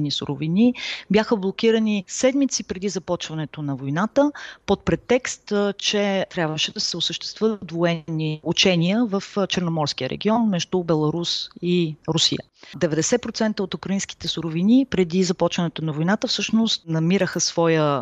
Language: Bulgarian